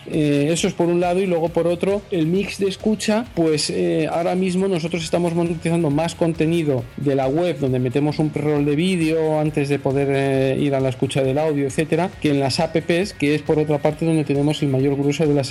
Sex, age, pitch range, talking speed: male, 40-59, 135-165 Hz, 230 wpm